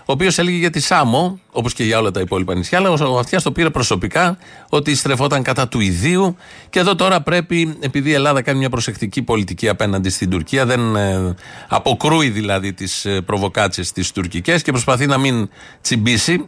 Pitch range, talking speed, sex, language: 115-160 Hz, 180 wpm, male, Greek